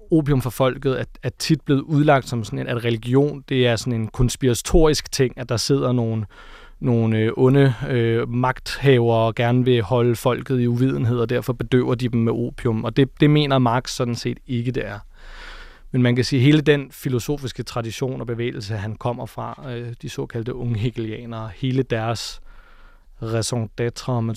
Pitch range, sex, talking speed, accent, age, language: 115-130 Hz, male, 180 wpm, native, 30-49, Danish